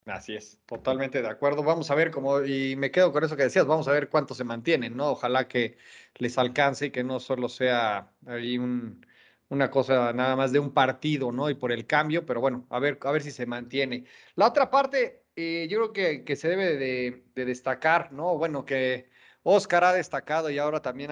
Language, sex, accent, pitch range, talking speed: Spanish, male, Mexican, 130-160 Hz, 220 wpm